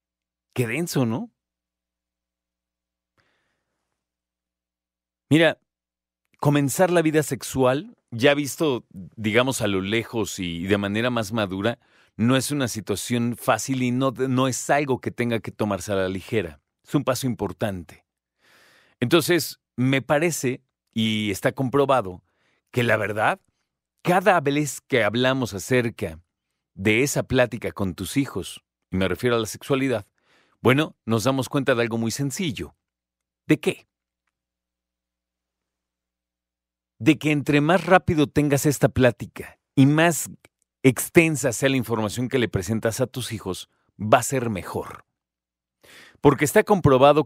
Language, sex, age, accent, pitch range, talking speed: Spanish, male, 40-59, Mexican, 90-140 Hz, 130 wpm